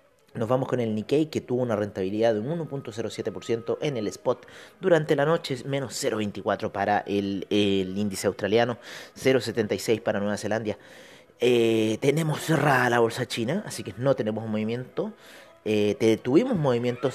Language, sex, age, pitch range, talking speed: Spanish, male, 30-49, 105-145 Hz, 160 wpm